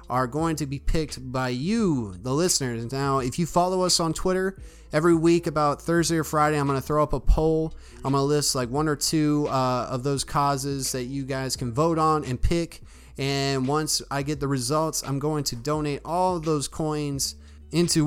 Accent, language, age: American, English, 30-49